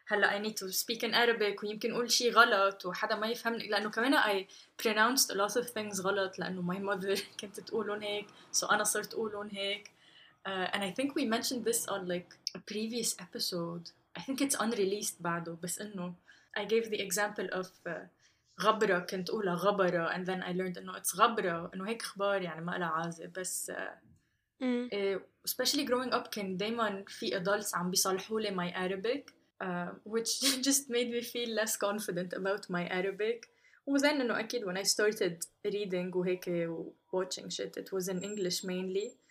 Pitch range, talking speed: 185-225 Hz, 185 wpm